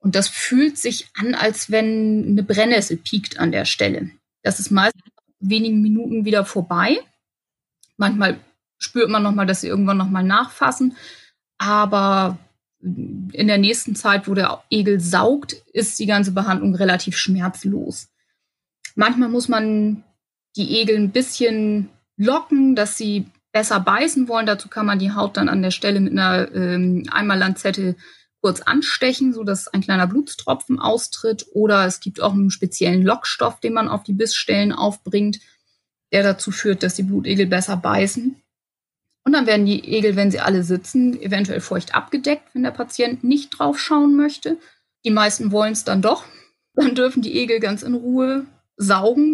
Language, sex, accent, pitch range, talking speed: German, female, German, 195-240 Hz, 160 wpm